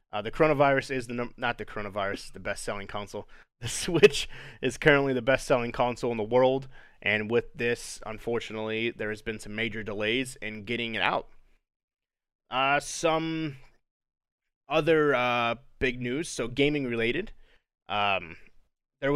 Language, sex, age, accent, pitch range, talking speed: English, male, 20-39, American, 115-135 Hz, 145 wpm